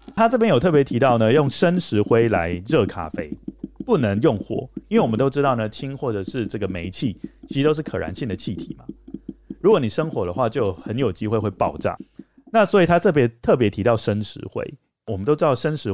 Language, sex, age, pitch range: Chinese, male, 30-49, 105-150 Hz